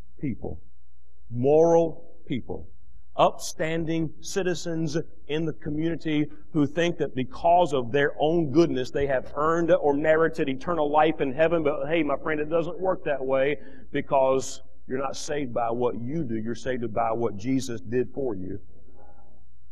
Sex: male